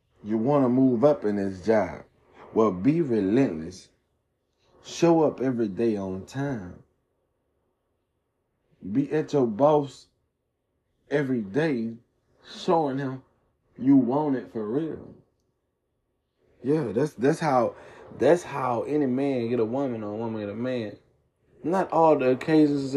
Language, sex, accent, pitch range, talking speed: English, male, American, 105-130 Hz, 130 wpm